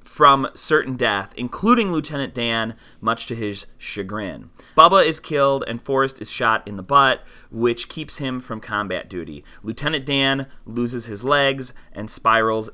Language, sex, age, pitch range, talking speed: English, male, 30-49, 110-140 Hz, 155 wpm